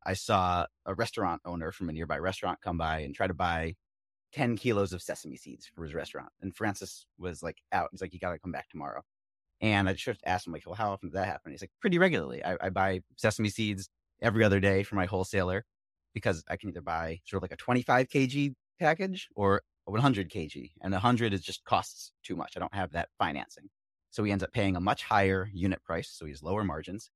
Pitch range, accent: 85-105 Hz, American